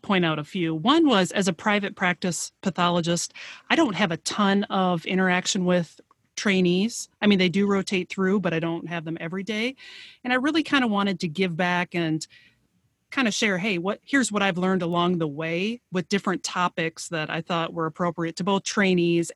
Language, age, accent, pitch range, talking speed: English, 30-49, American, 165-200 Hz, 205 wpm